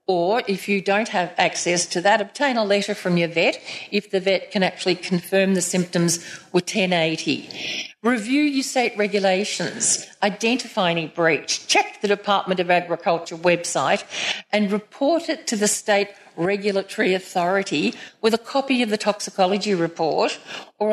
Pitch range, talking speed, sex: 180-220 Hz, 150 wpm, female